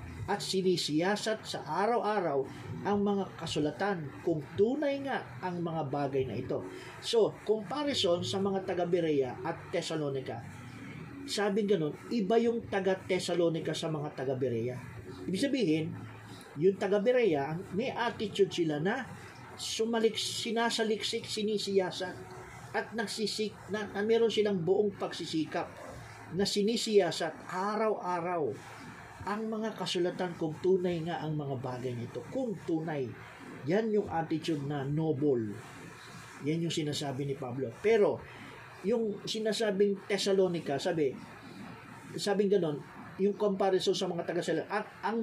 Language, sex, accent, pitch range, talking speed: Filipino, male, native, 145-205 Hz, 120 wpm